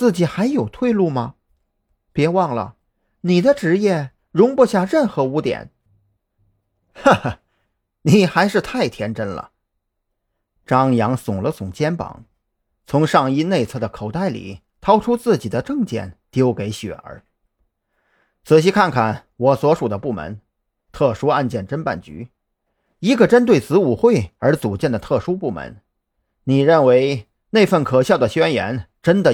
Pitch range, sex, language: 105-155 Hz, male, Chinese